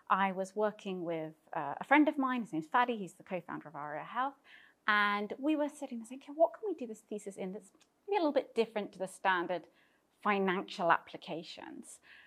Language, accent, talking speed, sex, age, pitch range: Greek, British, 200 wpm, female, 30-49, 180-240 Hz